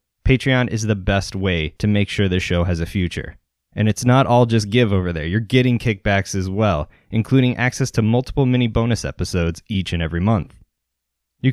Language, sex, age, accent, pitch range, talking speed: English, male, 20-39, American, 90-115 Hz, 200 wpm